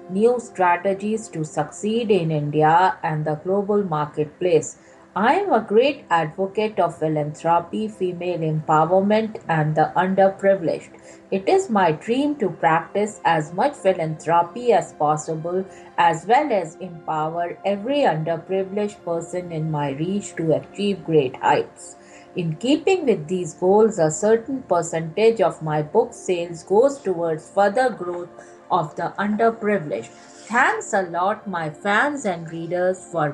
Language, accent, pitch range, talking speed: English, Indian, 155-205 Hz, 135 wpm